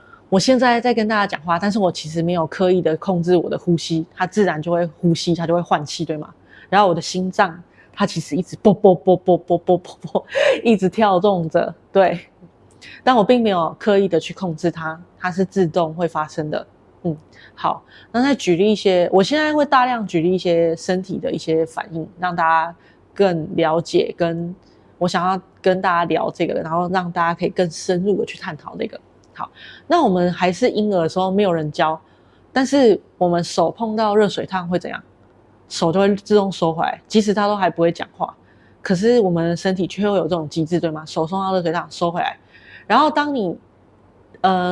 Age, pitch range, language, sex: 20-39, 170-205 Hz, Chinese, female